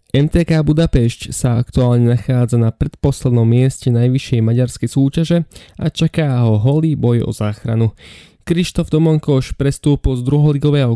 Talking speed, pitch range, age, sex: 125 wpm, 120-150 Hz, 20-39, male